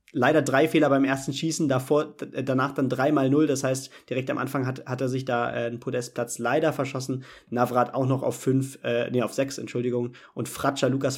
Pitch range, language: 125-145 Hz, German